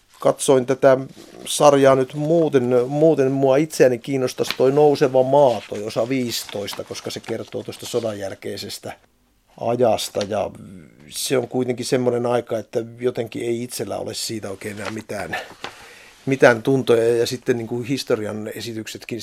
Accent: native